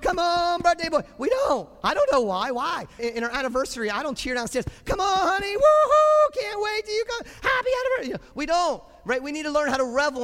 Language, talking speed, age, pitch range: English, 230 wpm, 40-59, 190-300 Hz